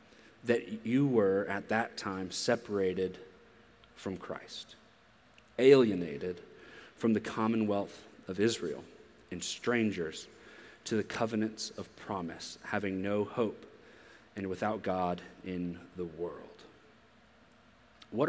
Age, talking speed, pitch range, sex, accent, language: 30-49, 105 wpm, 100-120 Hz, male, American, English